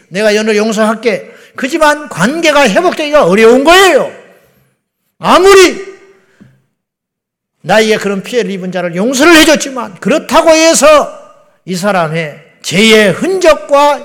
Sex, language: male, Korean